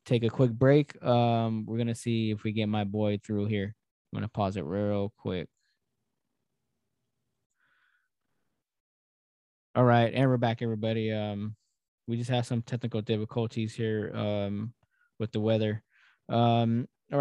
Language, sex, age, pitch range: English, male, 20-39, 110-130 Hz